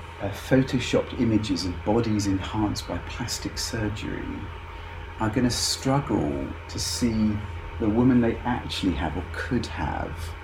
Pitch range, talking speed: 85-115 Hz, 130 wpm